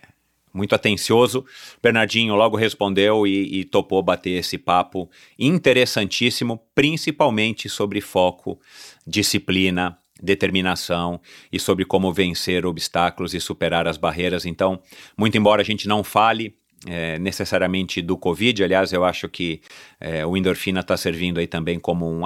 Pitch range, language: 85-105 Hz, Portuguese